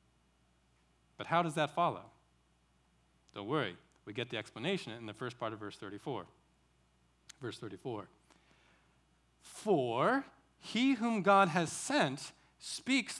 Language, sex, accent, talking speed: English, male, American, 125 wpm